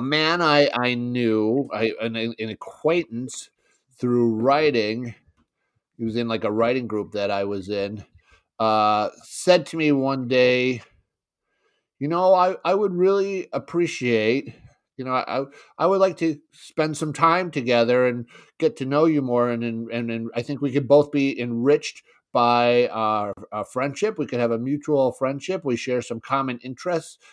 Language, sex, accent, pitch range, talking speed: English, male, American, 120-155 Hz, 170 wpm